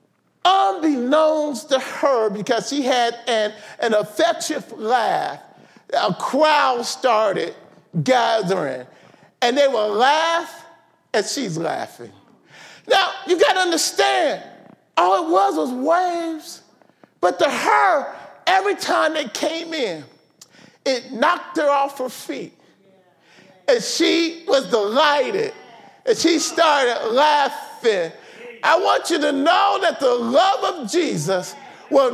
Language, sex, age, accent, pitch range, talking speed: English, male, 40-59, American, 260-355 Hz, 120 wpm